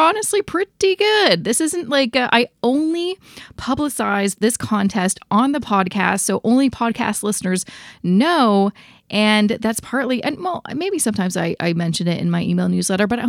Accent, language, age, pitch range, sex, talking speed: American, English, 20-39, 195-270 Hz, female, 165 wpm